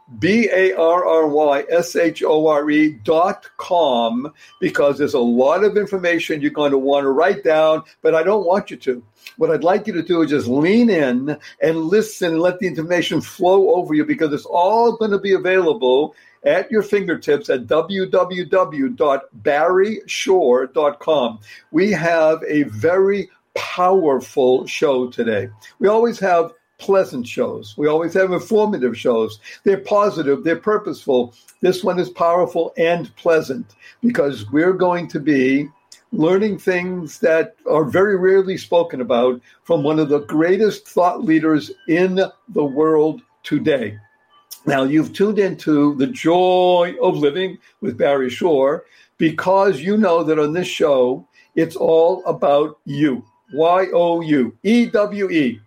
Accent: American